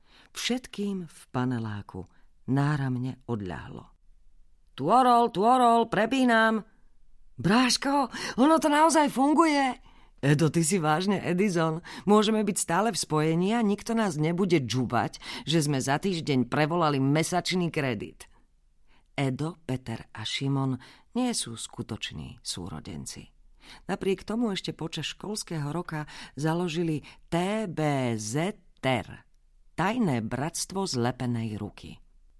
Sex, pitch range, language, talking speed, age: female, 120-190 Hz, Slovak, 105 wpm, 40-59